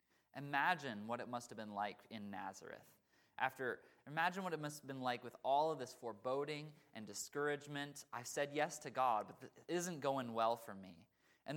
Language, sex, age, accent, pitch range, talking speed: English, male, 20-39, American, 115-180 Hz, 190 wpm